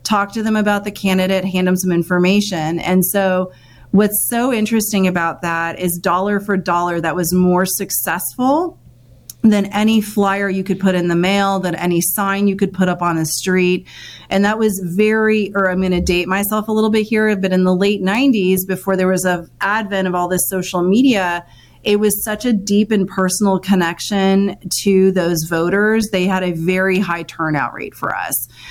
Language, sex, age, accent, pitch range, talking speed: English, female, 30-49, American, 180-215 Hz, 195 wpm